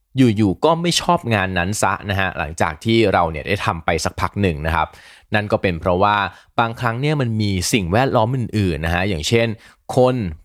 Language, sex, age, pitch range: Thai, male, 20-39, 90-115 Hz